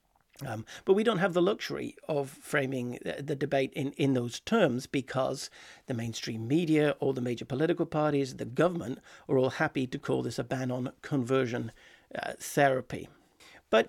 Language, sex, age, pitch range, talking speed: English, male, 50-69, 125-155 Hz, 170 wpm